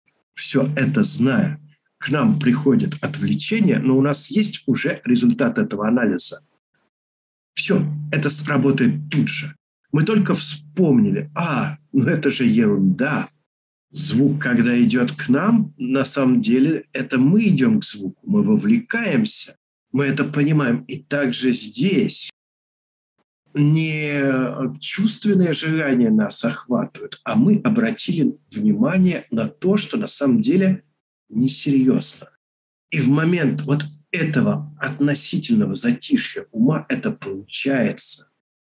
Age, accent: 50-69, native